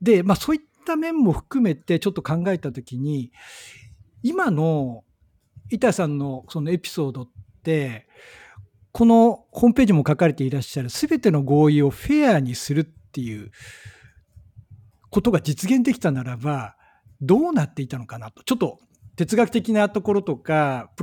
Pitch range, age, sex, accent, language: 130-205 Hz, 60-79, male, native, Japanese